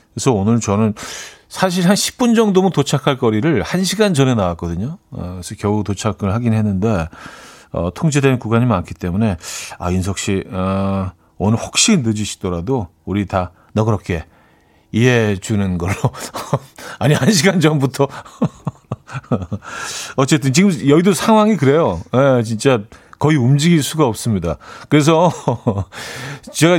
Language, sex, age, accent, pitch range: Korean, male, 40-59, native, 105-160 Hz